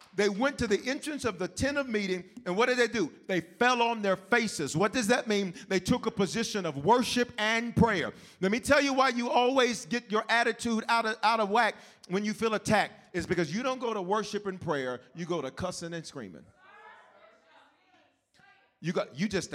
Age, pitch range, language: 40-59, 180-245 Hz, English